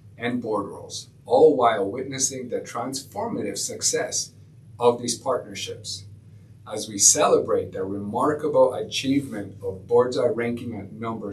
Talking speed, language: 120 wpm, English